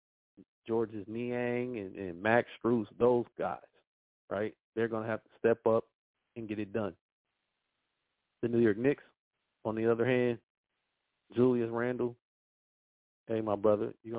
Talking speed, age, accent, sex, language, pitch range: 150 wpm, 40-59, American, male, English, 105-125 Hz